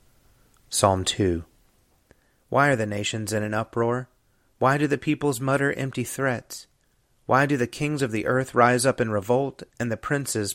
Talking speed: 170 wpm